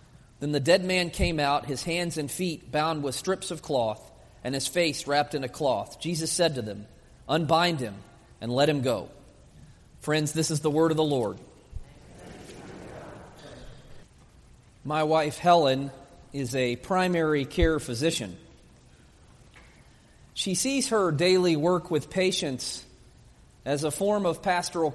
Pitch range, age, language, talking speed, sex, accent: 150-190 Hz, 40-59, English, 145 wpm, male, American